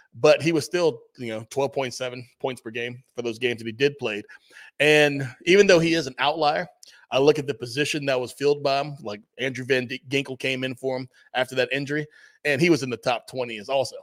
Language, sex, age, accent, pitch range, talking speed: English, male, 30-49, American, 120-145 Hz, 230 wpm